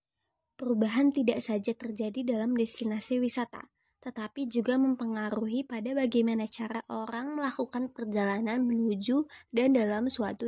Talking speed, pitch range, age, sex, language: 115 wpm, 210-250 Hz, 20-39, male, Indonesian